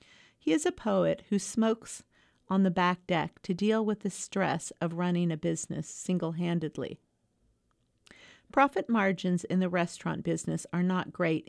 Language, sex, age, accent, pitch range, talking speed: English, female, 40-59, American, 170-200 Hz, 150 wpm